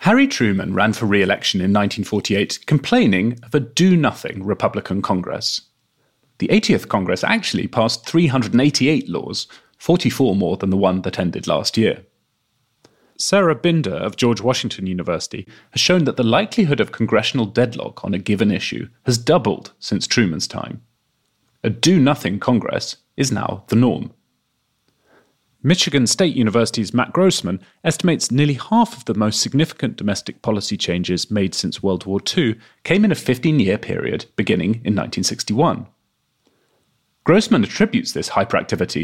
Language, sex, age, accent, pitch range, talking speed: English, male, 30-49, British, 110-165 Hz, 140 wpm